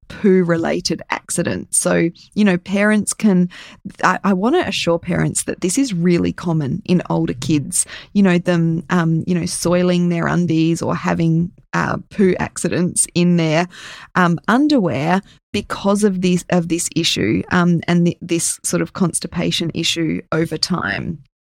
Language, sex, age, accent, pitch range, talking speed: English, female, 20-39, Australian, 170-210 Hz, 145 wpm